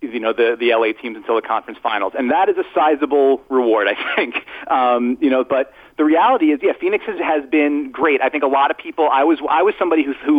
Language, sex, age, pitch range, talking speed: English, male, 40-59, 125-155 Hz, 245 wpm